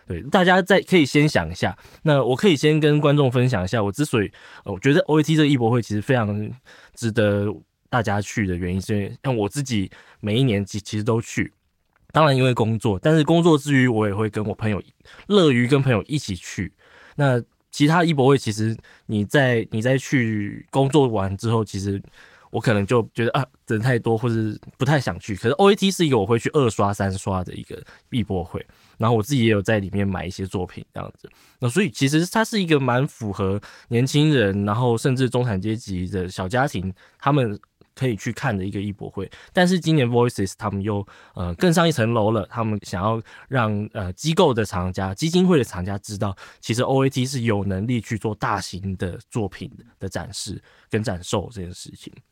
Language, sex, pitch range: Chinese, male, 100-135 Hz